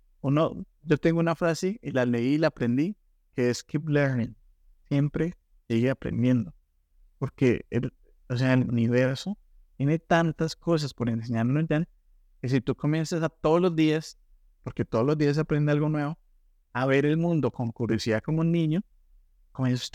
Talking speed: 165 wpm